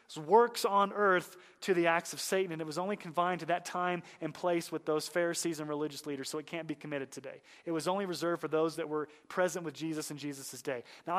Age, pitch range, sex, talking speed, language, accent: 30-49, 150-205 Hz, male, 240 wpm, English, American